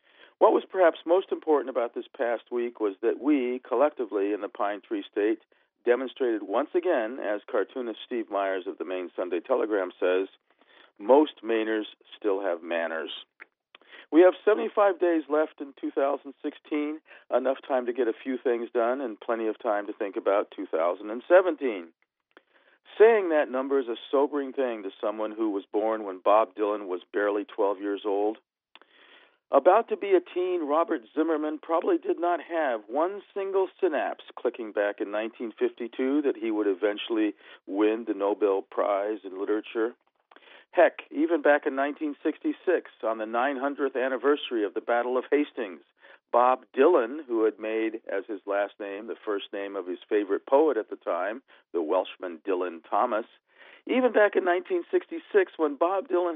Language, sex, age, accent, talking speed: English, male, 50-69, American, 160 wpm